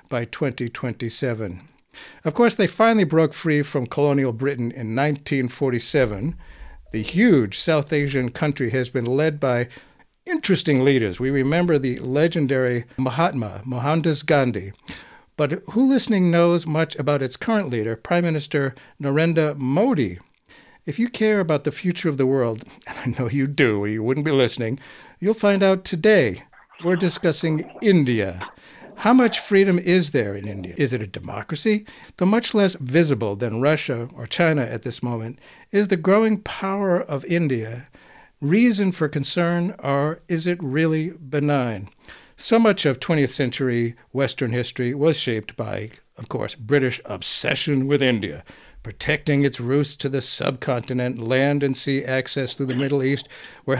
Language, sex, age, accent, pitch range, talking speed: English, male, 60-79, American, 125-170 Hz, 155 wpm